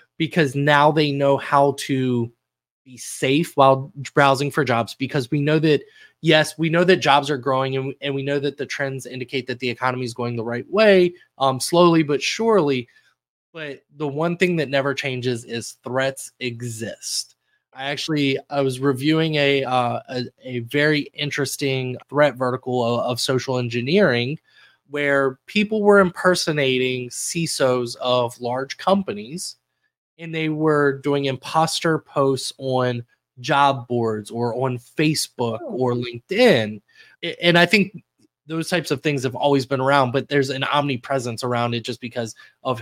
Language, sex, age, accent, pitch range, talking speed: English, male, 20-39, American, 125-155 Hz, 160 wpm